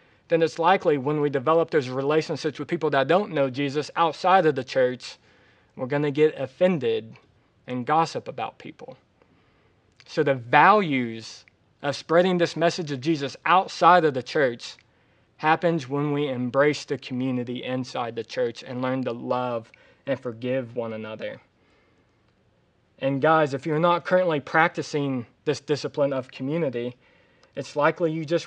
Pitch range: 130-165 Hz